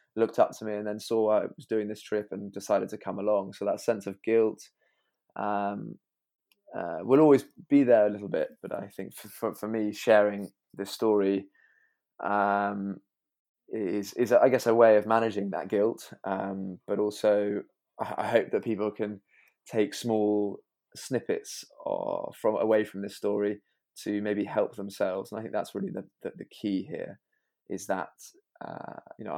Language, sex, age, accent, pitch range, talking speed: English, male, 20-39, British, 100-115 Hz, 180 wpm